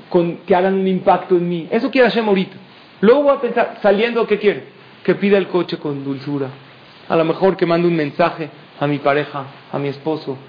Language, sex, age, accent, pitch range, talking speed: Spanish, male, 40-59, Mexican, 150-205 Hz, 205 wpm